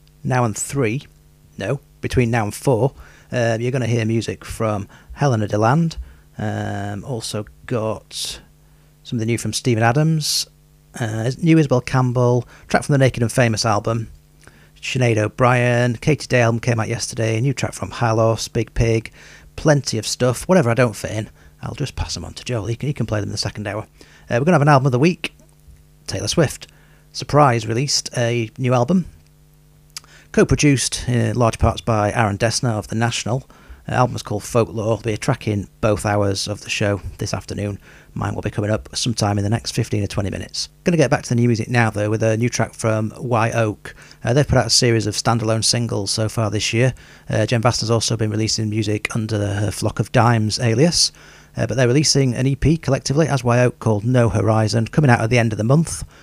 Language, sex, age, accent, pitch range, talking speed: English, male, 40-59, British, 105-135 Hz, 210 wpm